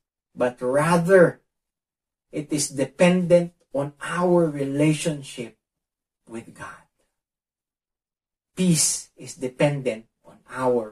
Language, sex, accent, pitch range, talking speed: English, male, Filipino, 140-200 Hz, 80 wpm